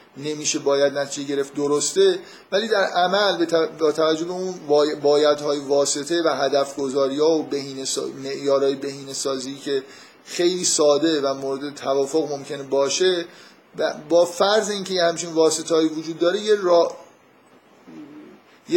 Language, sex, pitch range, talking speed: Persian, male, 145-185 Hz, 130 wpm